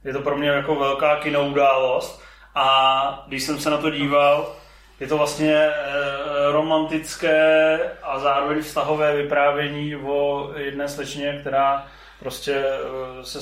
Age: 30-49